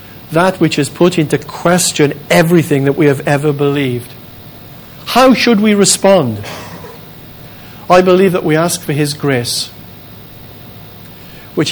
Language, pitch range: English, 125-165 Hz